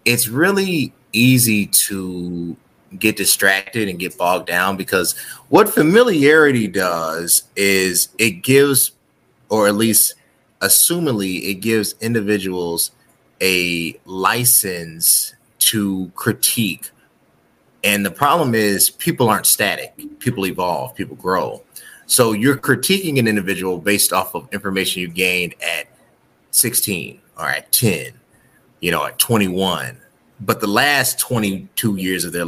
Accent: American